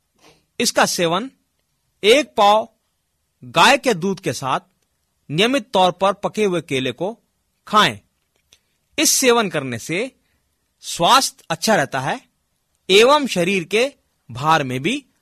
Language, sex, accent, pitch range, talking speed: Hindi, male, native, 145-230 Hz, 120 wpm